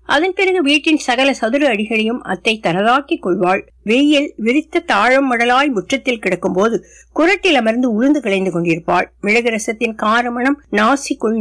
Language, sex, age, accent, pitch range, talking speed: Tamil, female, 50-69, native, 195-275 Hz, 110 wpm